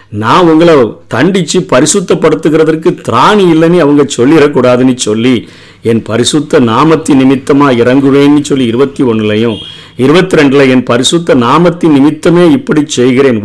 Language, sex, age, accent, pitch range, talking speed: Tamil, male, 50-69, native, 120-160 Hz, 100 wpm